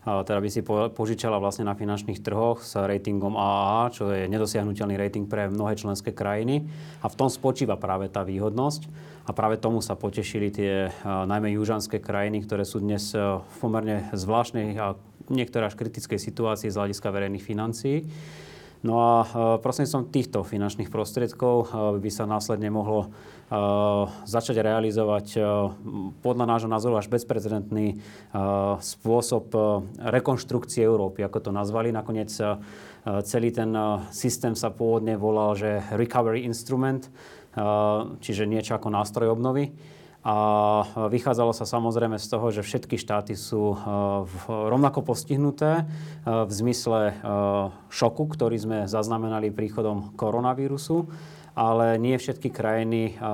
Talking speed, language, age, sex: 125 wpm, Slovak, 20-39, male